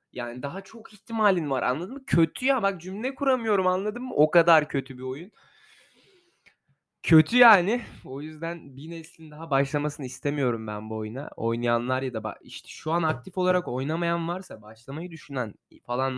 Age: 20-39